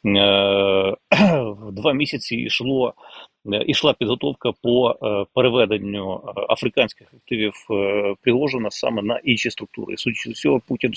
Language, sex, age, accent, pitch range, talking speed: Ukrainian, male, 30-49, native, 105-120 Hz, 100 wpm